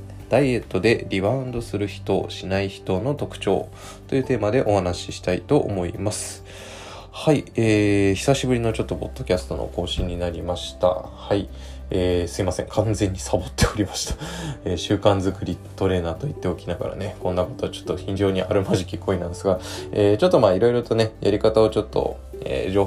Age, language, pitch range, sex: 20-39, Japanese, 90-105 Hz, male